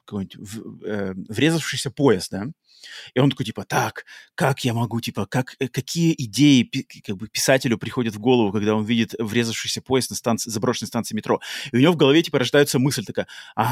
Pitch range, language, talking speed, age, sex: 115-140 Hz, Russian, 160 wpm, 30-49, male